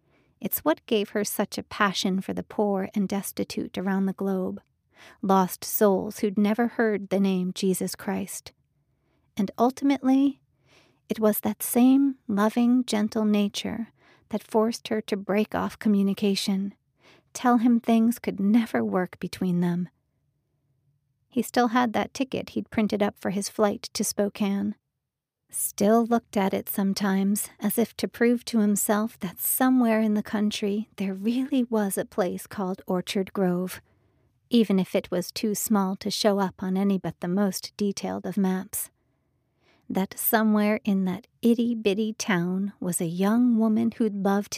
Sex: female